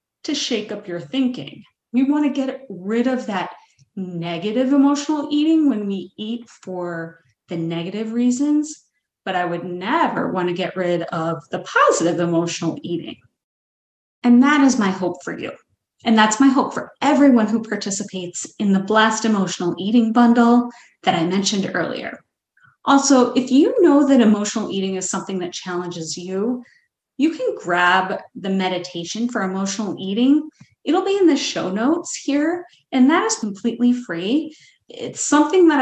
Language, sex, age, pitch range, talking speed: English, female, 30-49, 180-265 Hz, 155 wpm